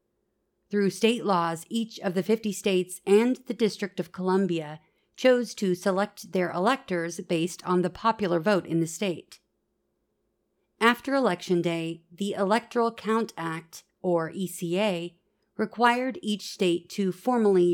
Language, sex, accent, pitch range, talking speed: English, female, American, 175-215 Hz, 135 wpm